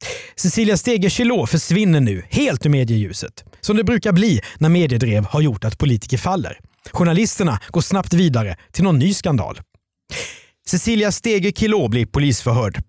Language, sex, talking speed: Swedish, male, 140 wpm